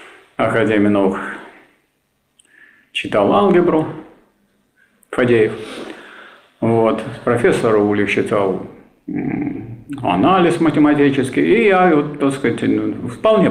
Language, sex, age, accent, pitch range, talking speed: Russian, male, 50-69, native, 115-160 Hz, 75 wpm